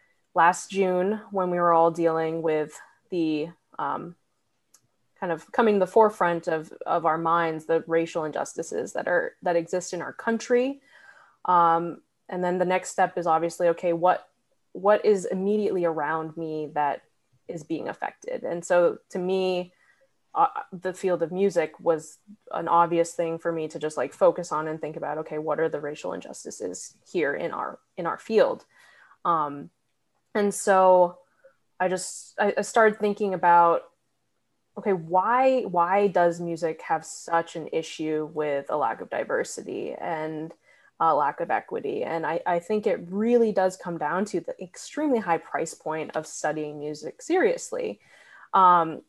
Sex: female